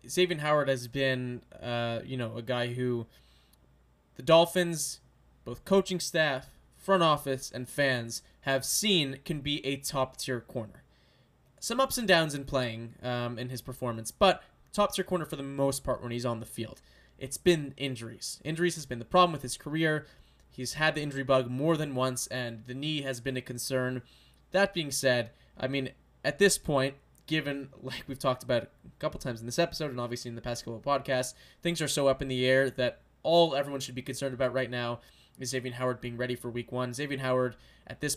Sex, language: male, English